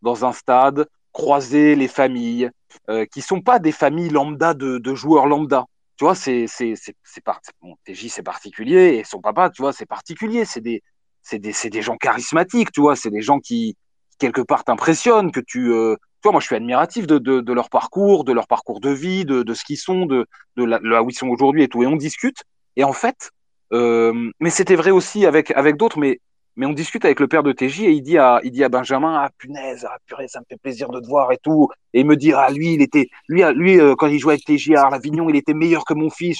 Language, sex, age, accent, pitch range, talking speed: French, male, 30-49, French, 130-170 Hz, 255 wpm